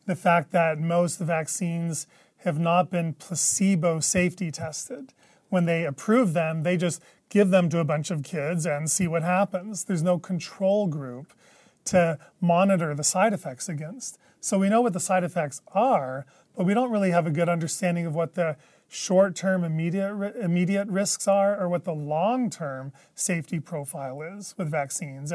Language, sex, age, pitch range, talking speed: English, male, 30-49, 155-190 Hz, 170 wpm